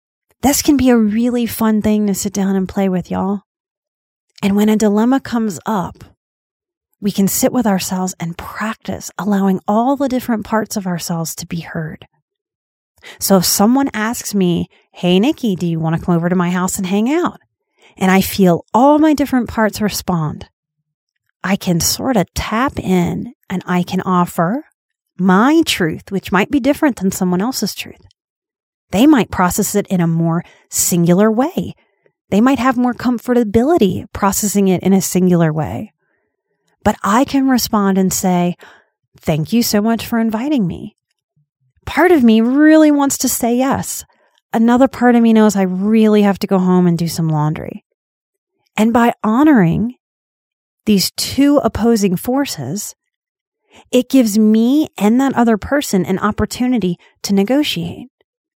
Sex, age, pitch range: female, 30-49, 185-255 Hz